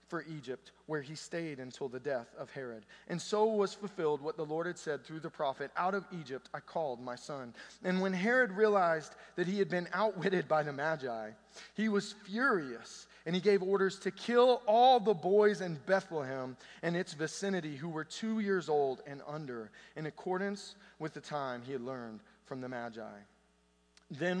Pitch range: 130-180 Hz